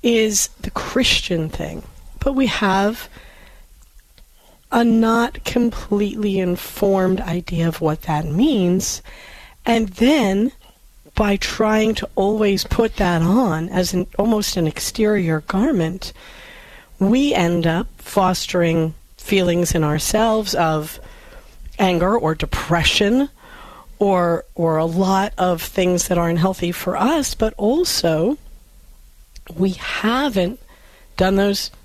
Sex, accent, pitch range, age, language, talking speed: female, American, 170-210 Hz, 40-59, English, 110 wpm